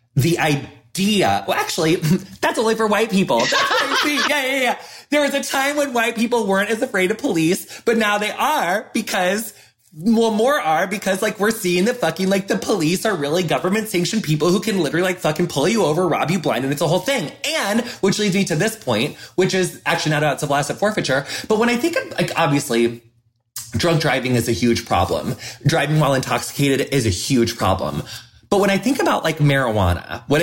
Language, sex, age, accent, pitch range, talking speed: English, male, 20-39, American, 125-190 Hz, 215 wpm